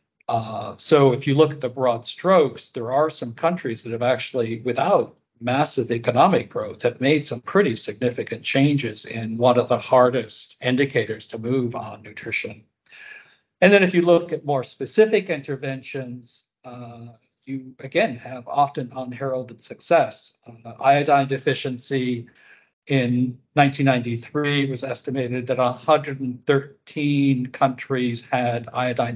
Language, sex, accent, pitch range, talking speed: English, male, American, 120-140 Hz, 135 wpm